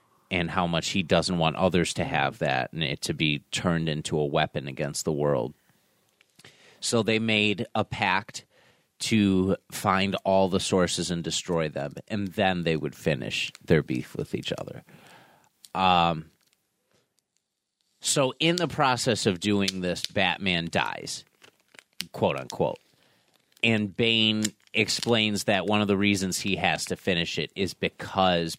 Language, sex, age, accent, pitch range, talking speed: English, male, 30-49, American, 80-105 Hz, 150 wpm